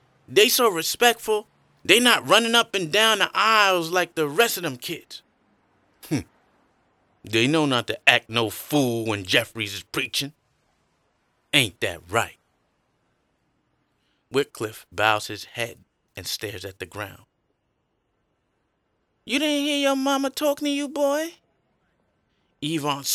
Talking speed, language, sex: 130 wpm, English, male